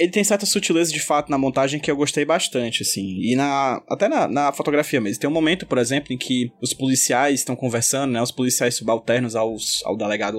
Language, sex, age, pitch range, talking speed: Portuguese, male, 20-39, 135-180 Hz, 220 wpm